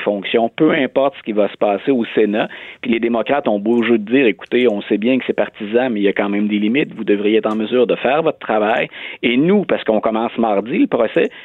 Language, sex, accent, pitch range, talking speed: French, male, Canadian, 110-160 Hz, 260 wpm